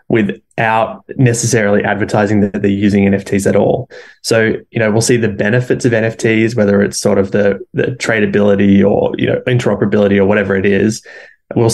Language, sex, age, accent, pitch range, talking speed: English, male, 20-39, Australian, 100-115 Hz, 175 wpm